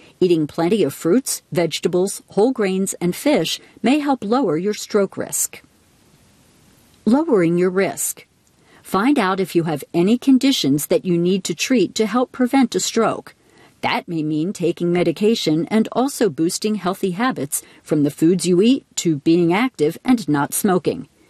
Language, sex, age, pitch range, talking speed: English, female, 50-69, 165-235 Hz, 160 wpm